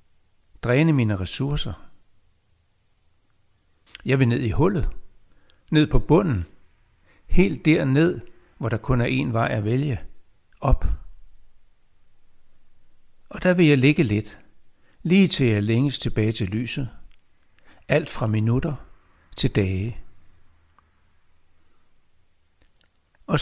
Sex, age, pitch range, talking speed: male, 60-79, 90-135 Hz, 110 wpm